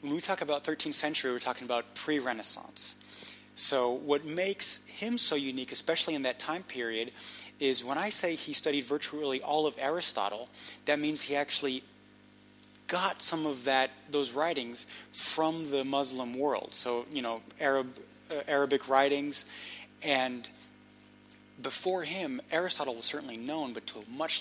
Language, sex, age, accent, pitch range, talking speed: English, male, 30-49, American, 125-155 Hz, 155 wpm